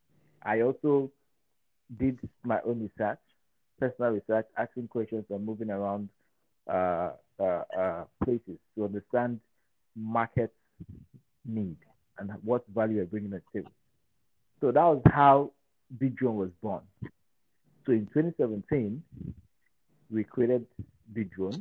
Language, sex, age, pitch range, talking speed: English, male, 50-69, 105-125 Hz, 115 wpm